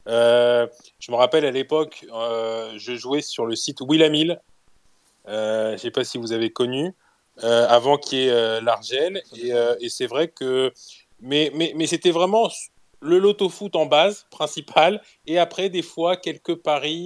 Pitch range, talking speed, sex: 125-160 Hz, 185 wpm, male